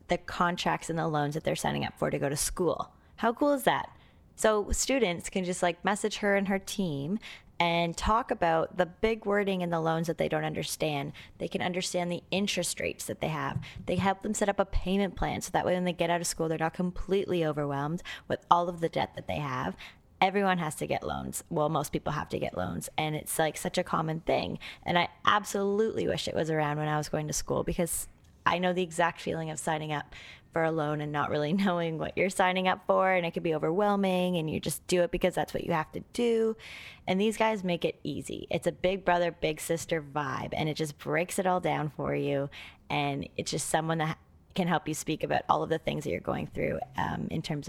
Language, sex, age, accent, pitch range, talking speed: English, female, 20-39, American, 155-190 Hz, 240 wpm